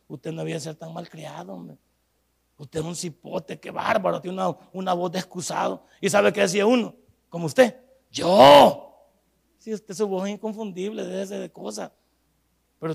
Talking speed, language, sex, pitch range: 185 wpm, Spanish, male, 185-260 Hz